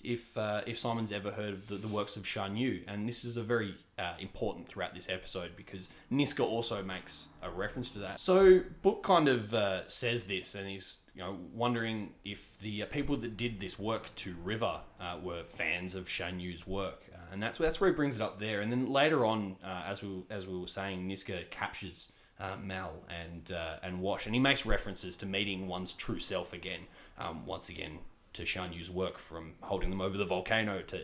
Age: 20-39